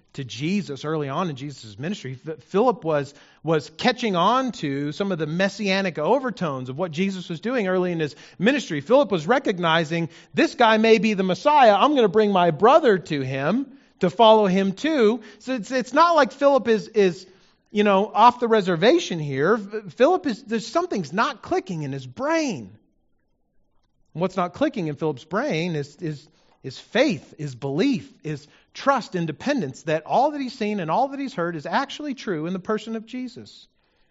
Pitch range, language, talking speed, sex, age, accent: 145-220 Hz, English, 180 wpm, male, 40-59, American